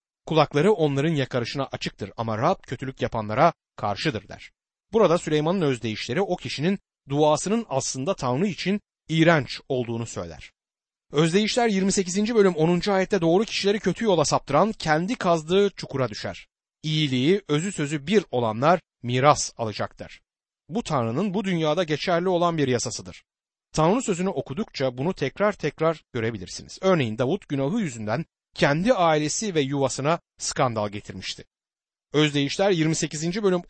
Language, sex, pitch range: Turkish, male, 130-185 Hz